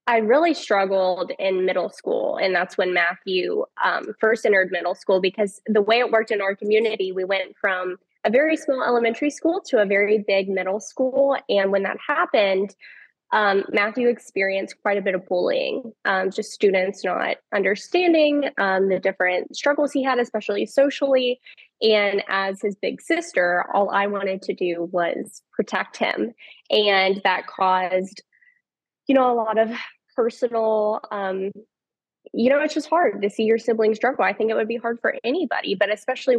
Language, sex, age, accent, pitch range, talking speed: English, female, 10-29, American, 190-240 Hz, 175 wpm